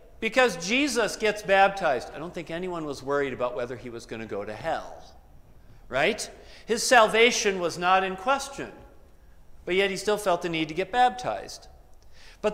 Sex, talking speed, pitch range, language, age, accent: male, 175 wpm, 130-215 Hz, English, 40-59, American